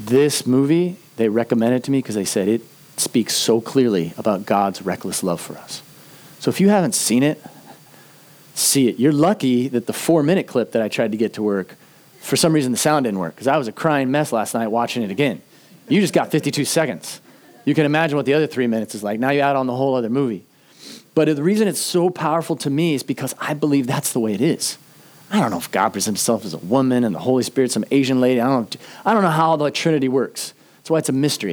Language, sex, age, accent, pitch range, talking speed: English, male, 30-49, American, 130-155 Hz, 245 wpm